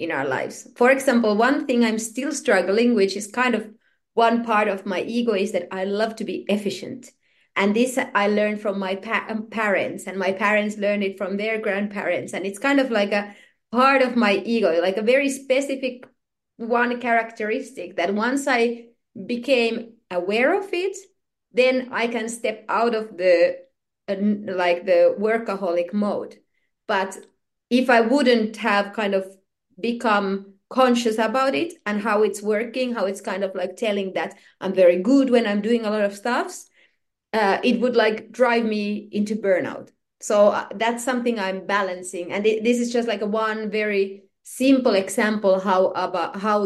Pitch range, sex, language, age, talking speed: 195-245 Hz, female, English, 30-49, 170 wpm